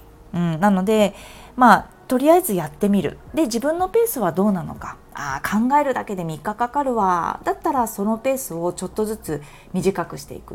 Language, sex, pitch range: Japanese, female, 170-255 Hz